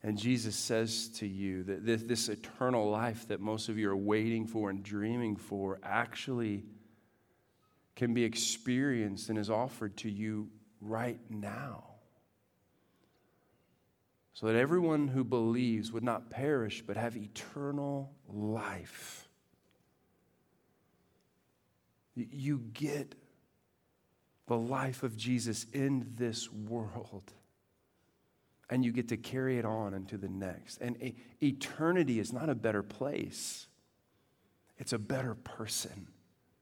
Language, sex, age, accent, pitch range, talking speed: English, male, 40-59, American, 110-140 Hz, 120 wpm